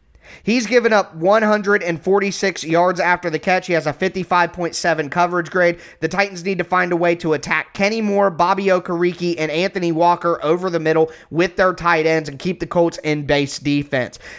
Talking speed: 185 wpm